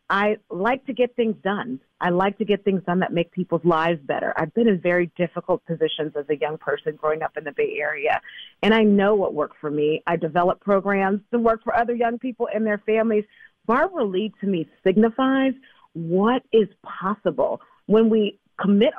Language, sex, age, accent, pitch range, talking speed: English, female, 40-59, American, 180-235 Hz, 200 wpm